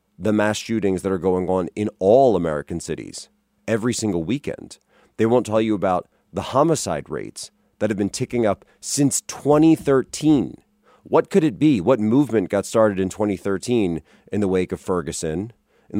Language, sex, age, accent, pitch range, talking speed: English, male, 30-49, American, 90-115 Hz, 170 wpm